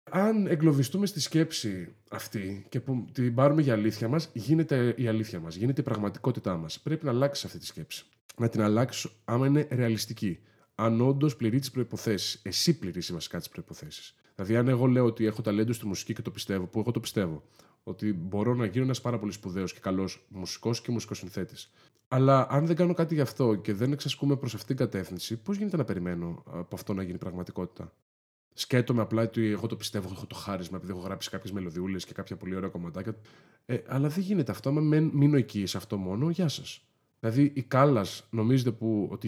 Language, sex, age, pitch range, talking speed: Greek, male, 20-39, 100-140 Hz, 200 wpm